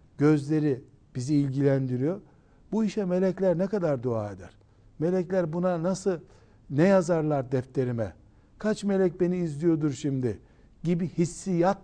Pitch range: 130-170 Hz